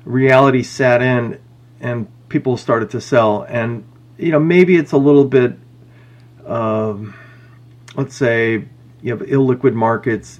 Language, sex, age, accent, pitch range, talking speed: English, male, 40-59, American, 115-130 Hz, 135 wpm